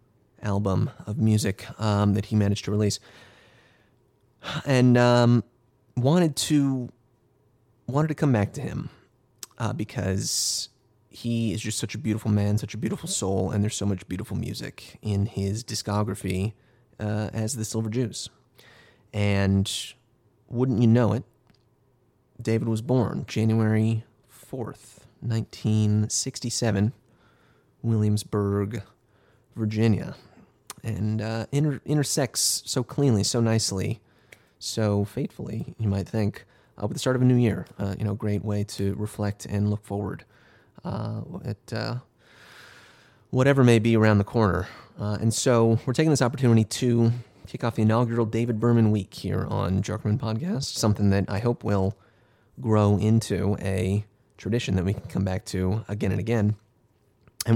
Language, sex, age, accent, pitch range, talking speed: English, male, 30-49, American, 105-125 Hz, 145 wpm